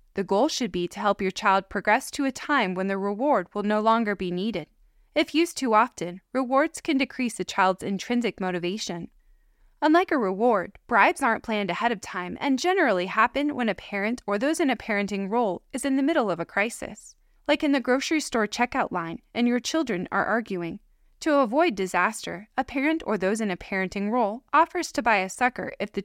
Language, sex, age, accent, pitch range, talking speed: English, female, 20-39, American, 190-270 Hz, 205 wpm